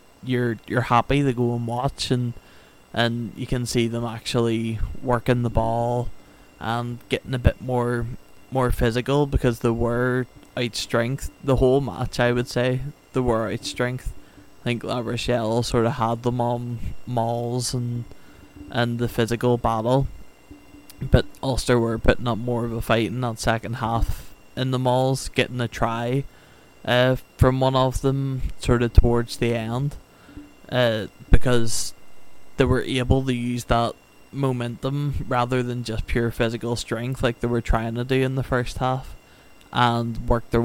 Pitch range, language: 115-125 Hz, English